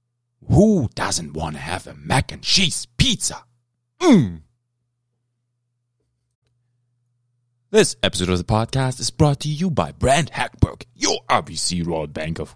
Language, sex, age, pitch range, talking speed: English, male, 30-49, 90-120 Hz, 130 wpm